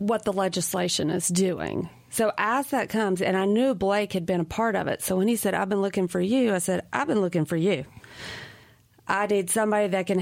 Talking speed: 235 wpm